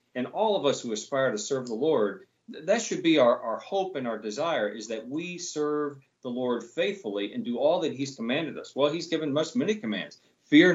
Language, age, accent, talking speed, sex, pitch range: English, 40-59, American, 225 wpm, male, 115-180 Hz